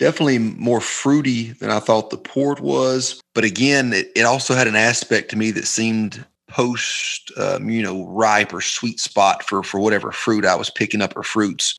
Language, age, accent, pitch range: English, 30-49, American, 100-125 Hz